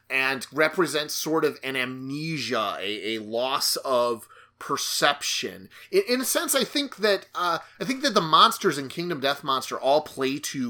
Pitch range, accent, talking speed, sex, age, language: 130-165 Hz, American, 175 wpm, male, 30-49, English